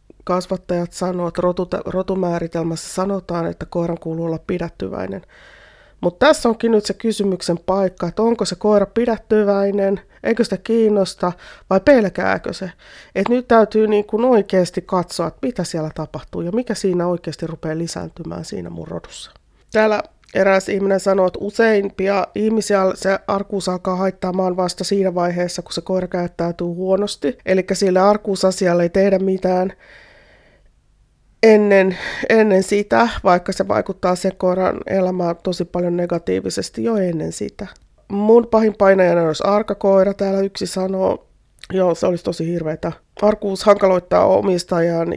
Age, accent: 30-49, native